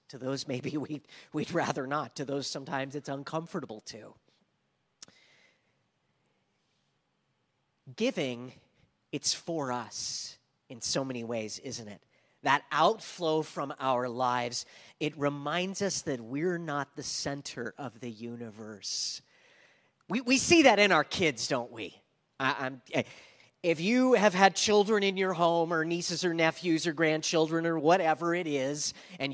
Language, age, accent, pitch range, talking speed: English, 40-59, American, 130-170 Hz, 145 wpm